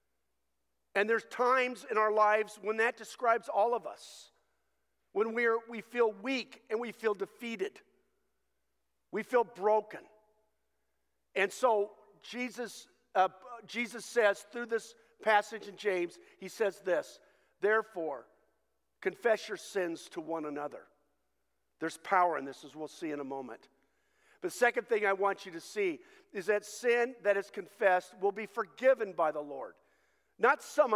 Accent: American